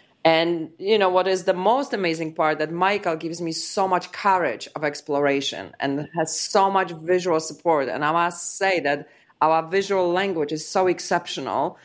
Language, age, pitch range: English, 30-49, 150-185 Hz